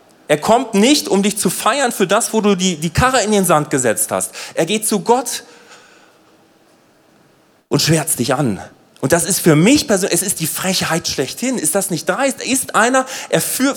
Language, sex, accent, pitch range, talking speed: German, male, German, 155-225 Hz, 200 wpm